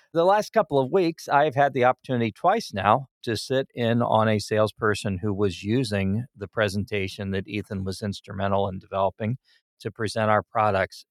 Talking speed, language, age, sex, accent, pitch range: 175 wpm, English, 50-69, male, American, 100-115 Hz